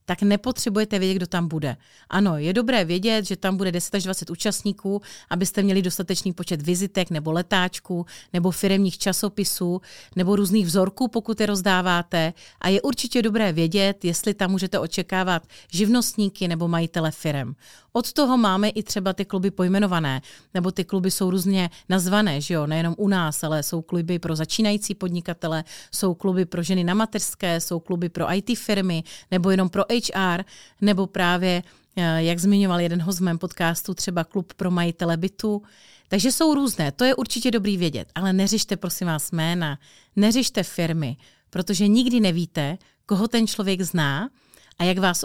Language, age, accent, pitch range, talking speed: Czech, 40-59, native, 170-205 Hz, 160 wpm